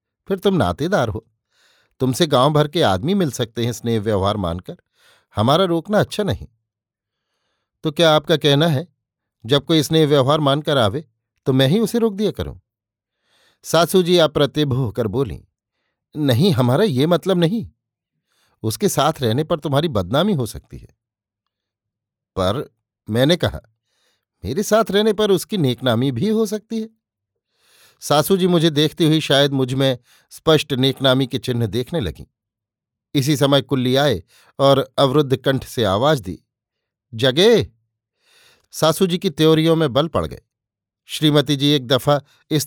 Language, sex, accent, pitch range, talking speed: Hindi, male, native, 115-155 Hz, 150 wpm